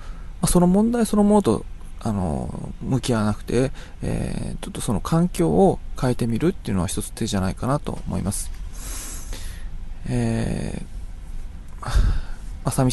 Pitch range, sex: 90-120 Hz, male